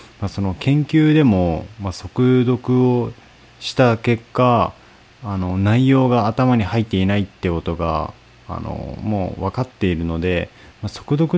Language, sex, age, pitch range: Japanese, male, 20-39, 85-115 Hz